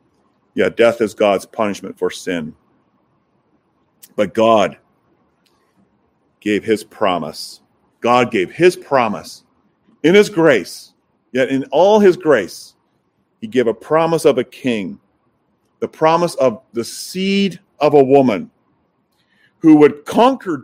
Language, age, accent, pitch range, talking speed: English, 40-59, American, 110-175 Hz, 120 wpm